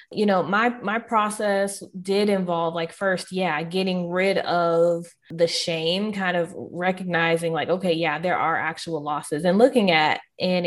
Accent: American